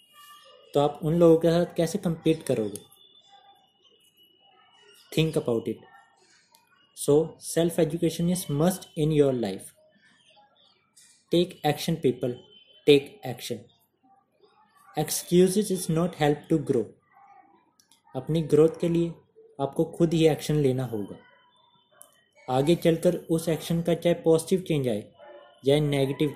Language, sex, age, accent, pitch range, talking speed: Hindi, male, 20-39, native, 140-180 Hz, 120 wpm